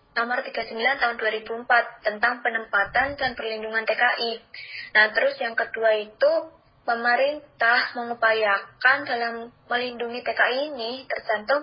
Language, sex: Indonesian, female